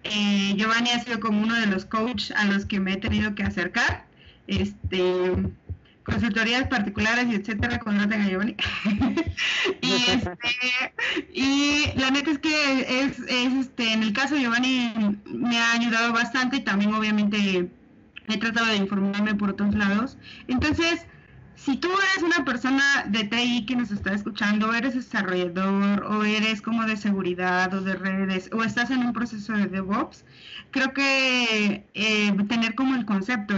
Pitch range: 200-250 Hz